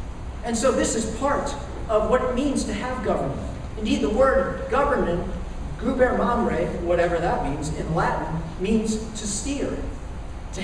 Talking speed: 145 wpm